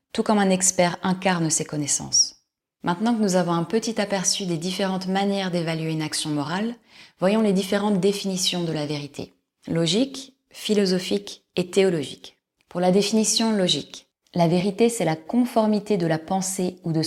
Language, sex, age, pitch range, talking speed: French, female, 20-39, 165-200 Hz, 160 wpm